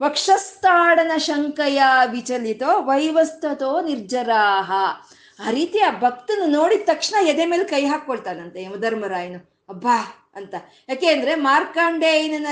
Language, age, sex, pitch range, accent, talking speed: Kannada, 20-39, female, 230-320 Hz, native, 100 wpm